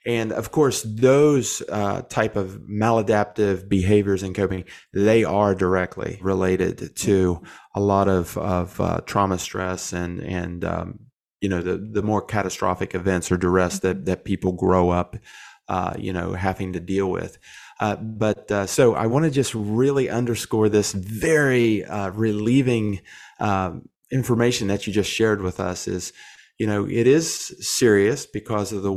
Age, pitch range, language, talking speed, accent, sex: 30-49, 95-110 Hz, English, 160 wpm, American, male